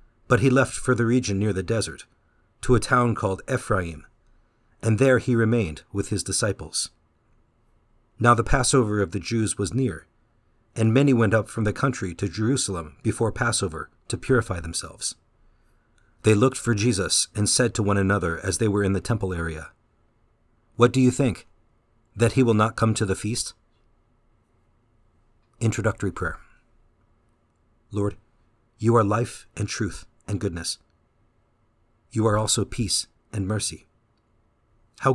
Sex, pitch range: male, 95-115 Hz